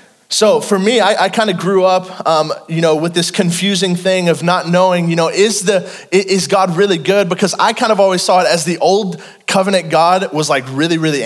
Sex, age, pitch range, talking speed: male, 20-39, 160-195 Hz, 230 wpm